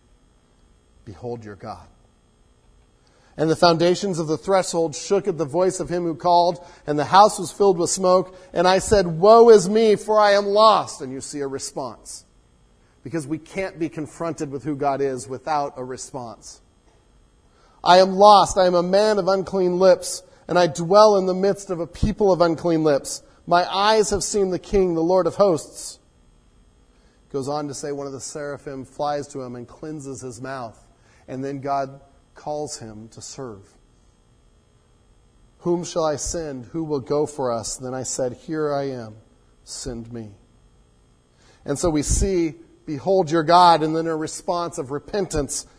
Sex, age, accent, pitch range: male, 40-59, American, 135-185 Hz